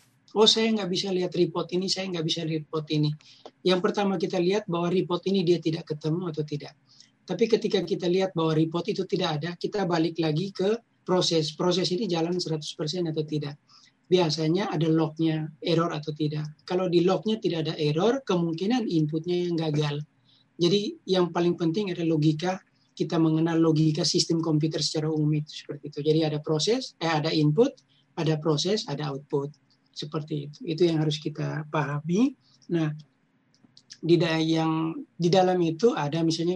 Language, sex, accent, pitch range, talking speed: Indonesian, male, native, 155-180 Hz, 165 wpm